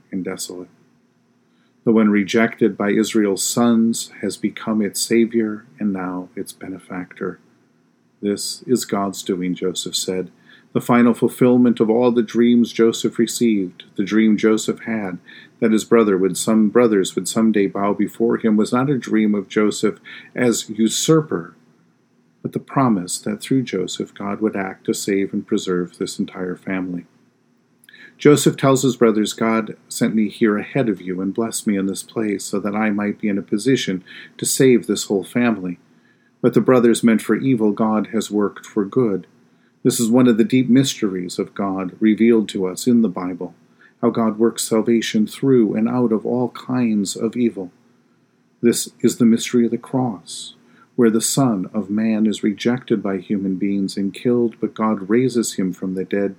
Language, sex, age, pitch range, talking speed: English, male, 50-69, 95-115 Hz, 175 wpm